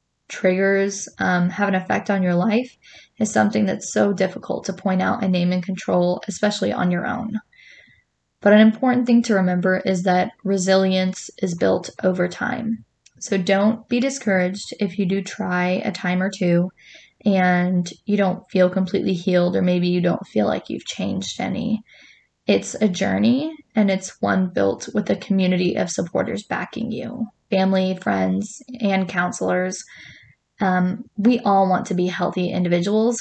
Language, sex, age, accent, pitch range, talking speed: English, female, 10-29, American, 180-215 Hz, 165 wpm